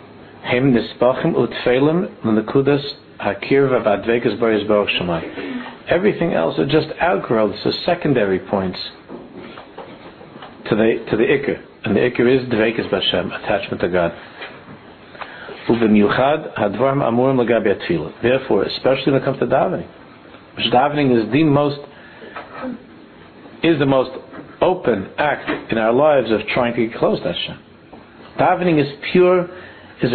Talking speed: 105 wpm